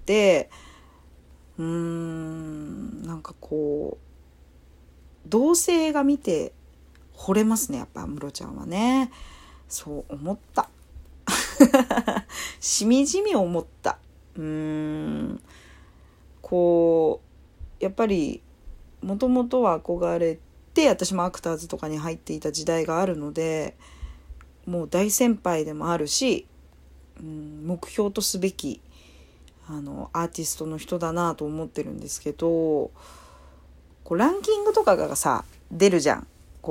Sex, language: female, Japanese